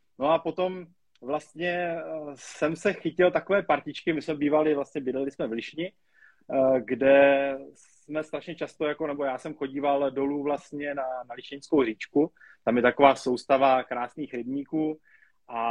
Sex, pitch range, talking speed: male, 140-165 Hz, 150 wpm